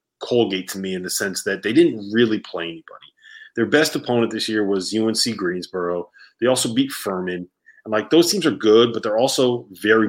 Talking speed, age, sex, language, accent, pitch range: 200 wpm, 30-49, male, English, American, 100-125 Hz